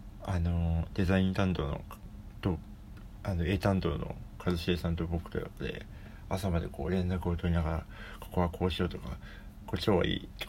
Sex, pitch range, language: male, 90-105 Hz, Japanese